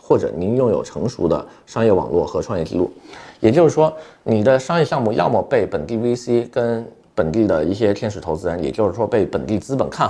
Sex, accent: male, native